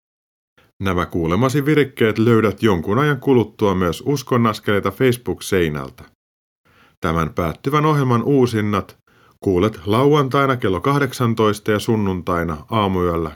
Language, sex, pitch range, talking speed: Finnish, male, 95-125 Hz, 100 wpm